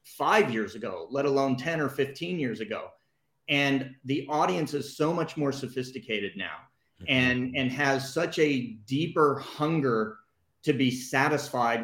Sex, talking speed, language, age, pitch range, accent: male, 145 wpm, English, 30-49, 115-145 Hz, American